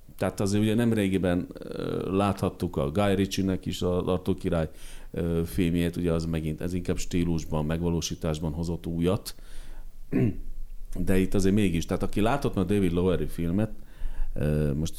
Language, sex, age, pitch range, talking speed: Hungarian, male, 40-59, 80-95 Hz, 135 wpm